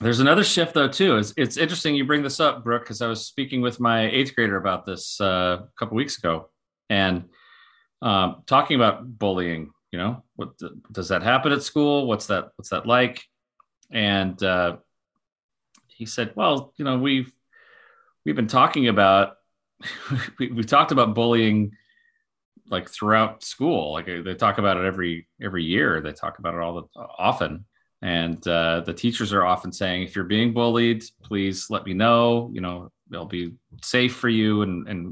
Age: 30-49